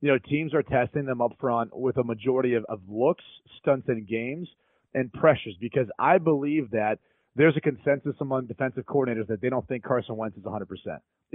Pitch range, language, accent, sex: 125-150 Hz, English, American, male